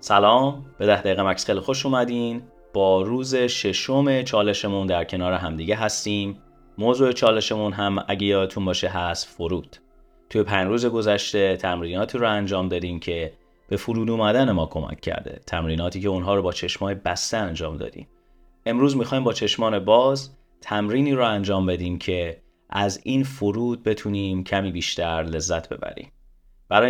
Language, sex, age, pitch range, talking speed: Persian, male, 30-49, 90-110 Hz, 150 wpm